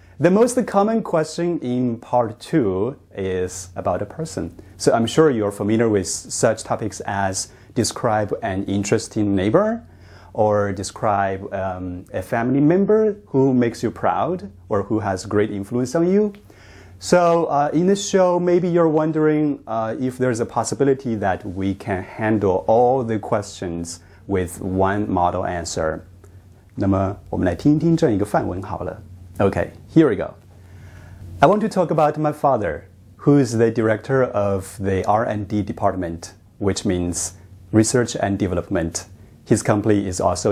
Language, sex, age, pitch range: Chinese, male, 30-49, 95-130 Hz